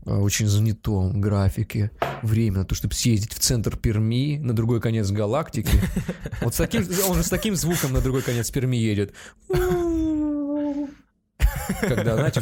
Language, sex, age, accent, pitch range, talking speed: Russian, male, 20-39, native, 110-150 Hz, 130 wpm